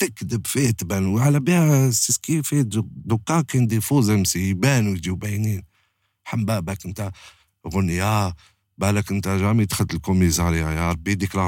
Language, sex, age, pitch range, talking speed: French, male, 50-69, 95-125 Hz, 125 wpm